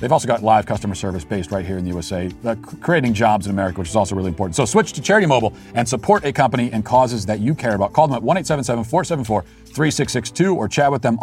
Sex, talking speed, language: male, 240 wpm, English